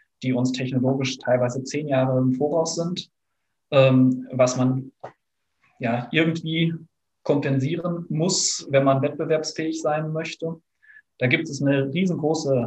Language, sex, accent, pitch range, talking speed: German, male, German, 125-150 Hz, 125 wpm